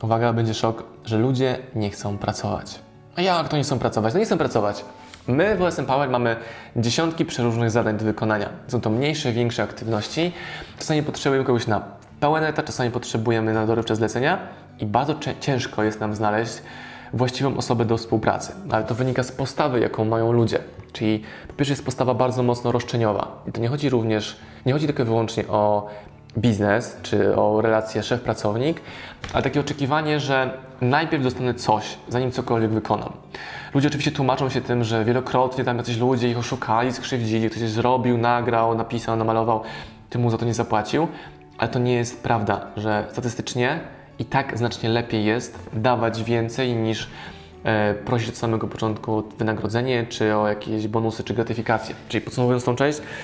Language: Polish